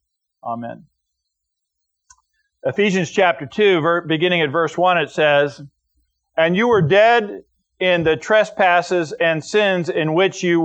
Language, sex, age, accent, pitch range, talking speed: English, male, 50-69, American, 145-195 Hz, 125 wpm